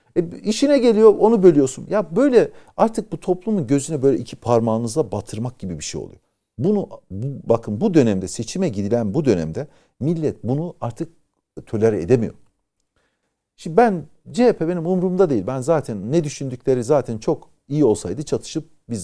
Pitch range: 130-215 Hz